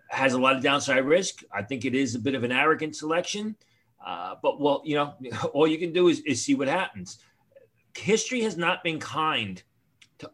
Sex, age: male, 40-59